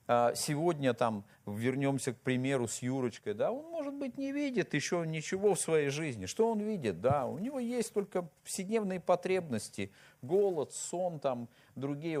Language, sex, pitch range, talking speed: Russian, male, 95-155 Hz, 155 wpm